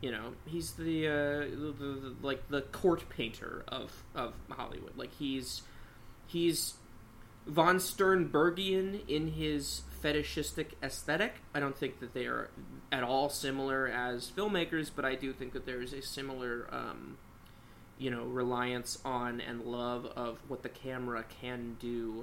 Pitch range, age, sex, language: 120-145 Hz, 20-39, male, English